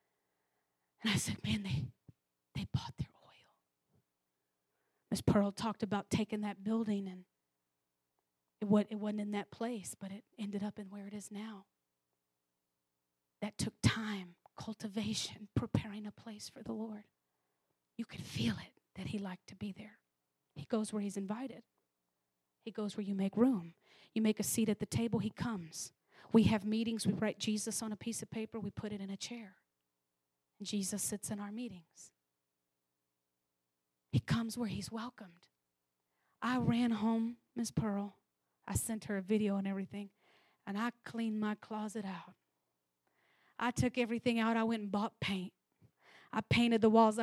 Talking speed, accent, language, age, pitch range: 165 wpm, American, English, 30-49, 185-230 Hz